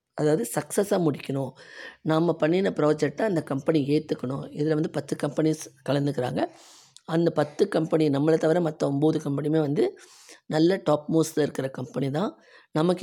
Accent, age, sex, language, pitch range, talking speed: native, 20-39, female, Tamil, 135-155 Hz, 140 wpm